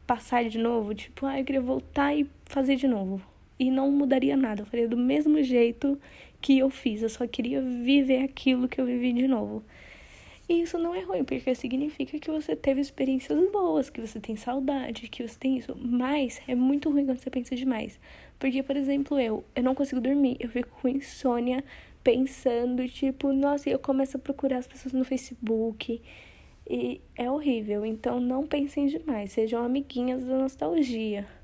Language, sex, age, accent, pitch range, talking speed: Portuguese, female, 10-29, Brazilian, 230-275 Hz, 185 wpm